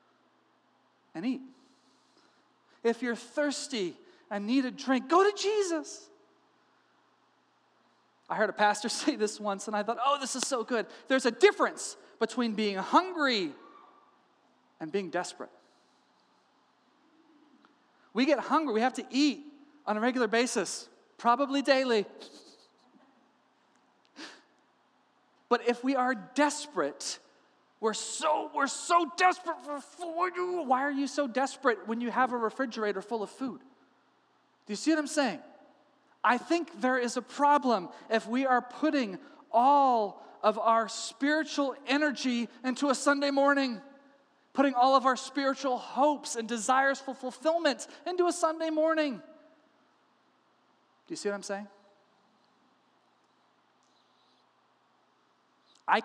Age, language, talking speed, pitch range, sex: 40-59, English, 130 wpm, 235-300 Hz, male